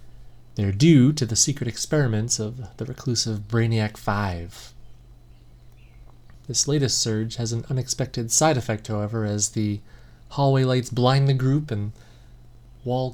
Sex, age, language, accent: male, 30-49, English, American